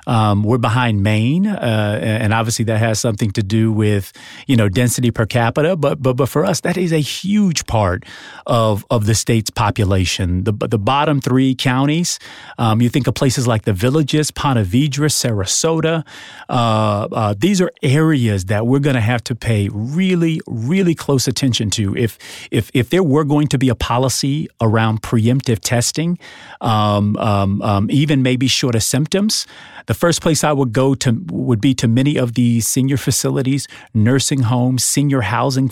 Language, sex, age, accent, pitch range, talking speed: English, male, 40-59, American, 110-145 Hz, 180 wpm